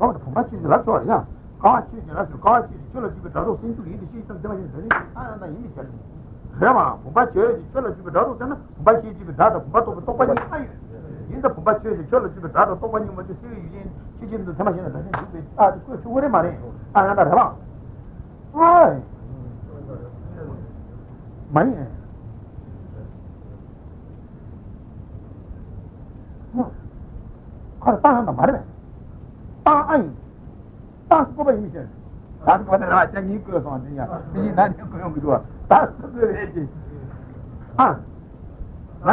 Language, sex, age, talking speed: Italian, male, 60-79, 40 wpm